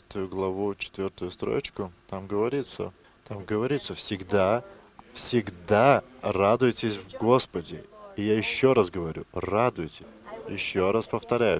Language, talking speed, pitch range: English, 110 wpm, 90-110 Hz